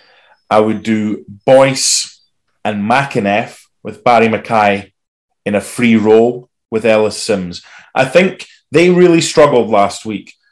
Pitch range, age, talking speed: 110-145 Hz, 30-49, 130 wpm